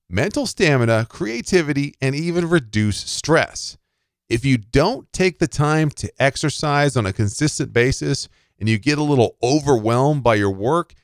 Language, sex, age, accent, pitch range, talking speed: English, male, 40-59, American, 105-150 Hz, 150 wpm